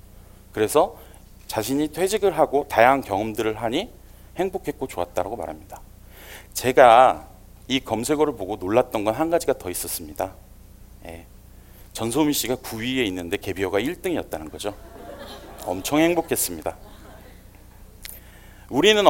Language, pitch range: English, 95-140 Hz